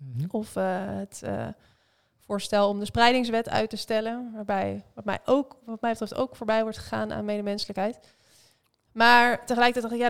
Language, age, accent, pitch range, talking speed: Dutch, 20-39, Dutch, 200-230 Hz, 160 wpm